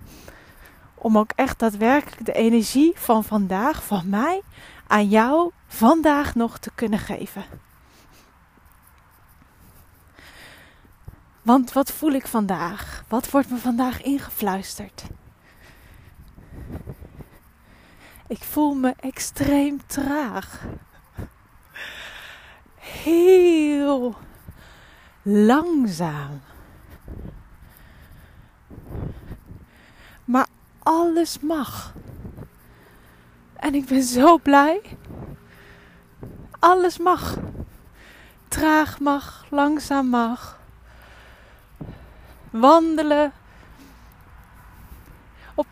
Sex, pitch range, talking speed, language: female, 210-295 Hz, 65 wpm, Dutch